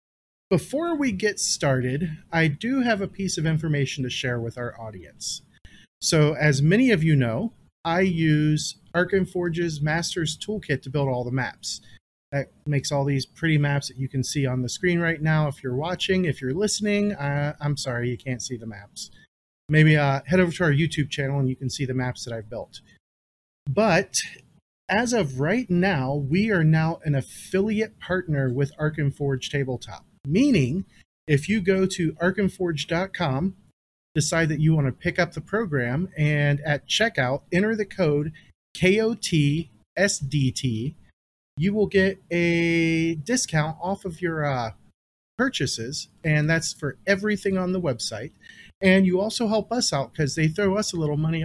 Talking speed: 170 wpm